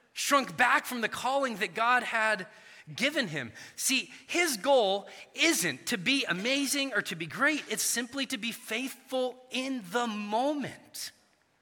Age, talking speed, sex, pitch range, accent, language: 30-49, 150 wpm, male, 155-235 Hz, American, English